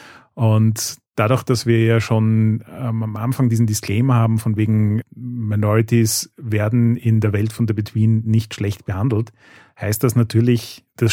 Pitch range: 110-125 Hz